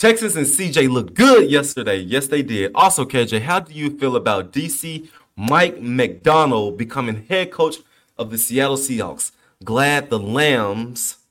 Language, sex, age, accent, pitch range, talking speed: English, male, 20-39, American, 110-140 Hz, 155 wpm